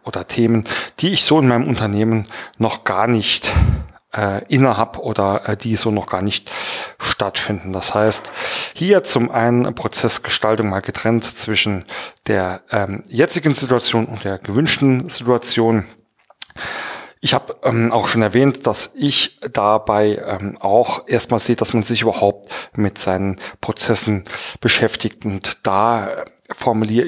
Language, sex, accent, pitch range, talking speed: German, male, German, 105-125 Hz, 135 wpm